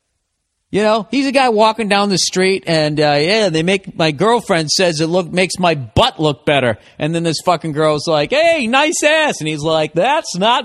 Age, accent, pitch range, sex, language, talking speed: 40-59, American, 135-185 Hz, male, English, 215 wpm